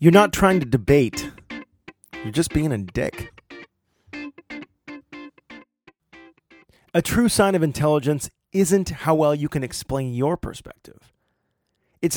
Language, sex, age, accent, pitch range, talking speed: English, male, 30-49, American, 130-175 Hz, 120 wpm